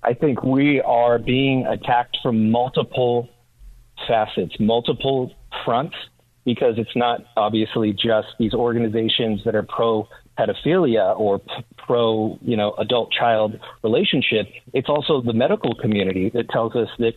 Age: 30-49